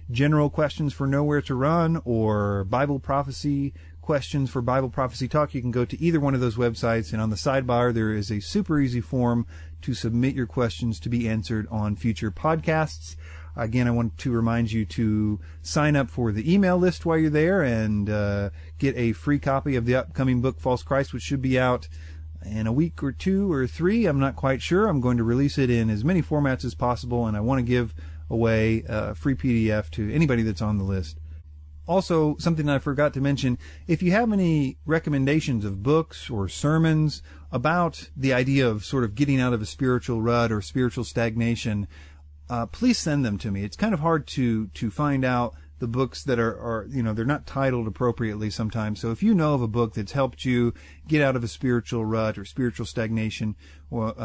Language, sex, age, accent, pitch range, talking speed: English, male, 40-59, American, 110-140 Hz, 210 wpm